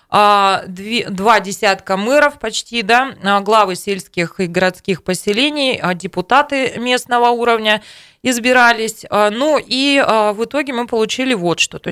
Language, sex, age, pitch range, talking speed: Russian, female, 20-39, 190-245 Hz, 115 wpm